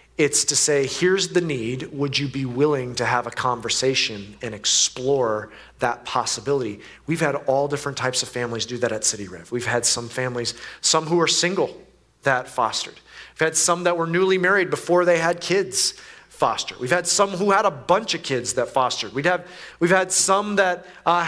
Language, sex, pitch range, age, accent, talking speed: English, male, 130-170 Hz, 30-49, American, 195 wpm